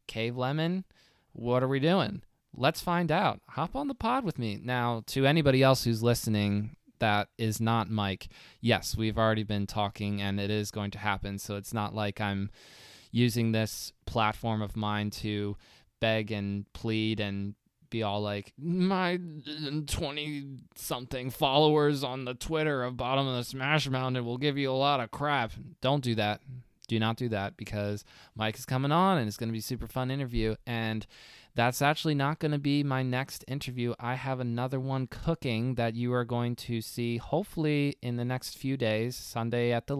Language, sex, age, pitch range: English, male, 20-39, 110-135 Hz